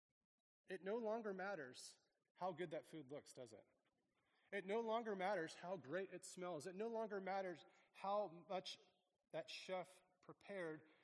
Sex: male